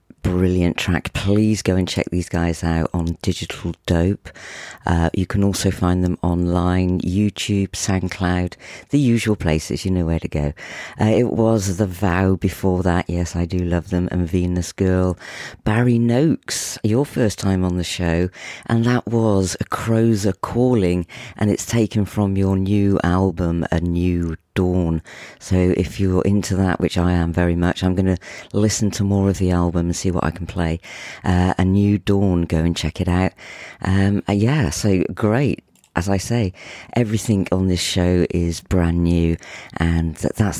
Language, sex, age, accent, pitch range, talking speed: English, female, 40-59, British, 85-105 Hz, 175 wpm